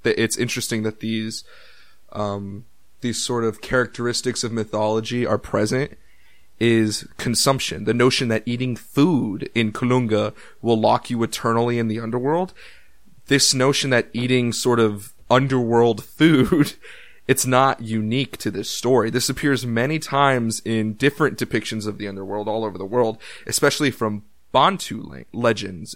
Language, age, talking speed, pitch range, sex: English, 20-39, 145 wpm, 110-130 Hz, male